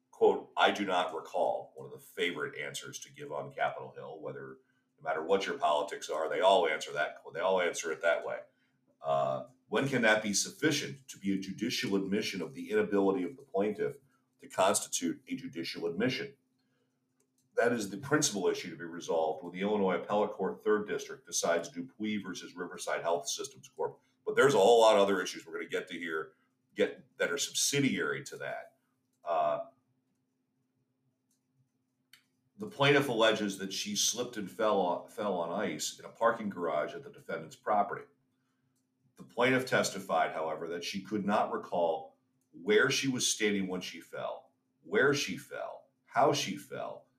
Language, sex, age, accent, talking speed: English, male, 40-59, American, 175 wpm